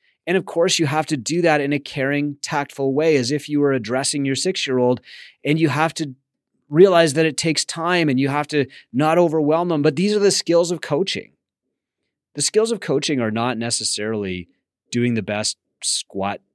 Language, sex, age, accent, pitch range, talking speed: English, male, 30-49, American, 120-155 Hz, 205 wpm